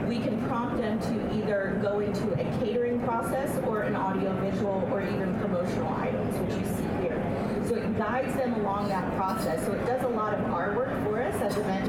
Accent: American